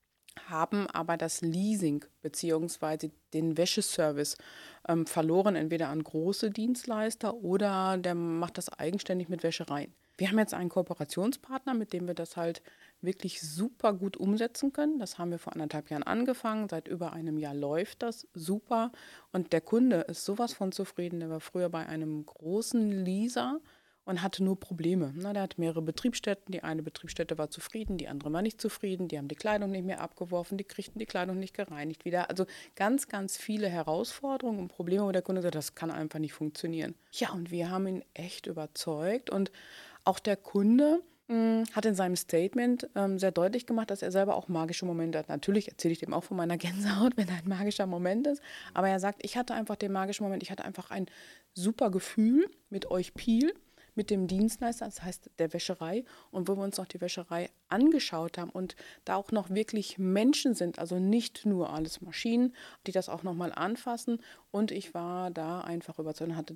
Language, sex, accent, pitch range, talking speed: German, female, German, 170-215 Hz, 190 wpm